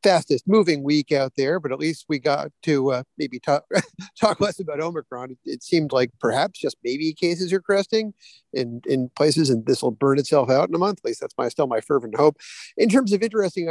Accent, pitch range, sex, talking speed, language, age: American, 140-190 Hz, male, 230 wpm, English, 50-69